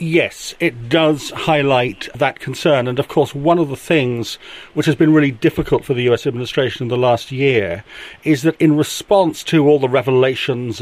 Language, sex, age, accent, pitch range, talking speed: English, male, 40-59, British, 130-160 Hz, 190 wpm